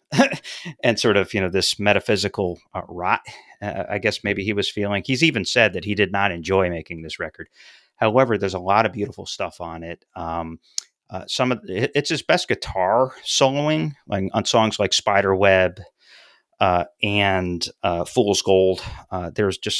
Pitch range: 95-115 Hz